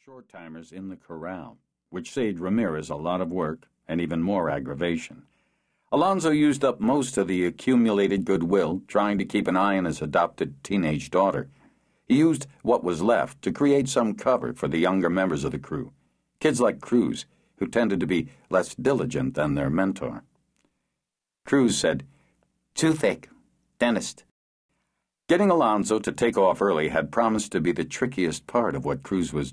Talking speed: 170 wpm